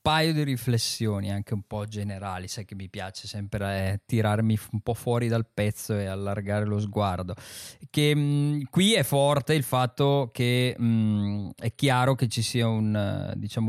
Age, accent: 20-39, native